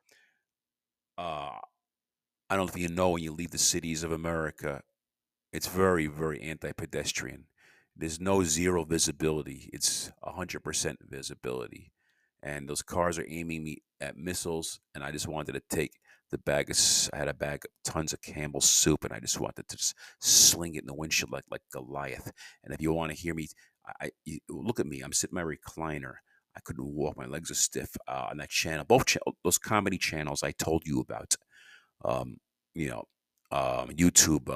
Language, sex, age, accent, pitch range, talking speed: English, male, 40-59, American, 75-85 Hz, 190 wpm